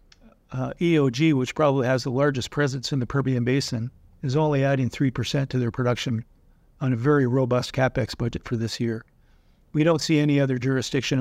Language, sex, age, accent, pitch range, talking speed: English, male, 50-69, American, 125-140 Hz, 185 wpm